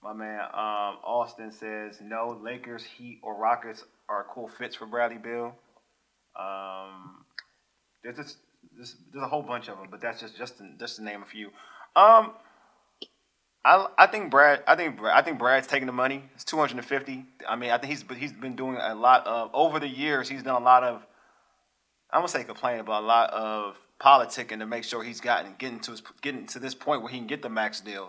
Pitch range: 110-130 Hz